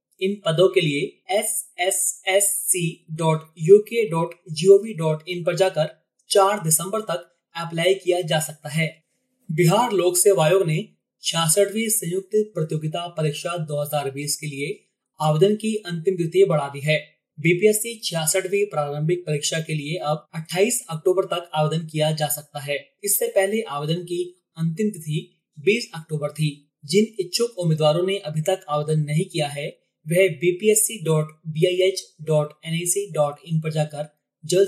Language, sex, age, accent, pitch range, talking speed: Hindi, male, 20-39, native, 155-195 Hz, 145 wpm